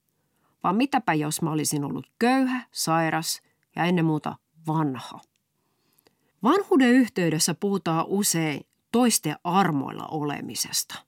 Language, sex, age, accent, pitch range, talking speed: Finnish, female, 30-49, native, 150-220 Hz, 105 wpm